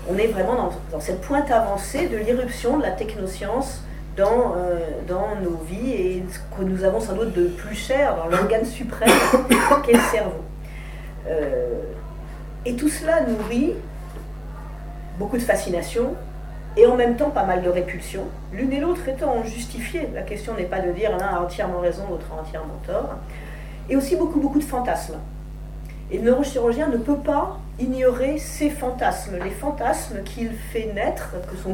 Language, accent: French, French